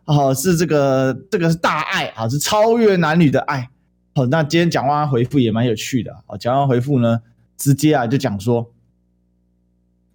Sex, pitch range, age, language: male, 120-190 Hz, 20-39, Chinese